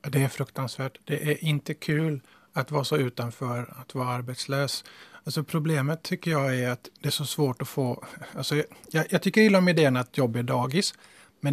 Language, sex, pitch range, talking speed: Finnish, male, 135-160 Hz, 195 wpm